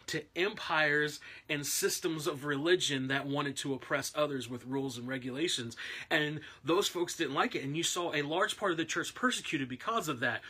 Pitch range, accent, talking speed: 140-185 Hz, American, 195 wpm